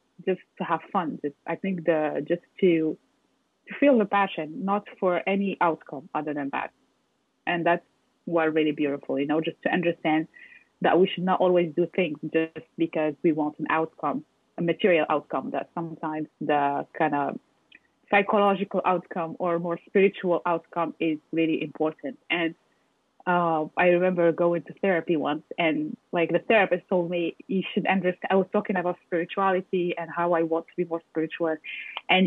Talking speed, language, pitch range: 170 wpm, English, 160-195 Hz